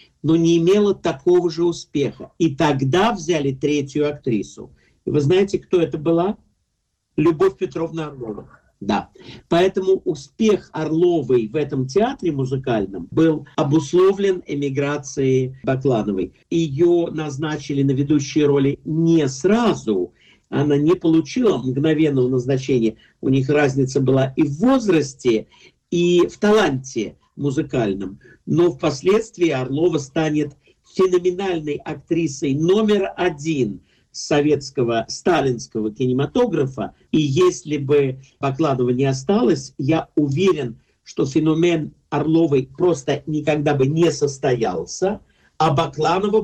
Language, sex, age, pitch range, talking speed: Russian, male, 50-69, 140-175 Hz, 105 wpm